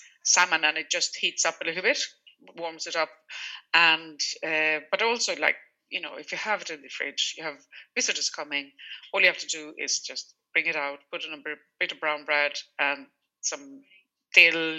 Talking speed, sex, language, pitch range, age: 205 wpm, female, English, 150-175 Hz, 30-49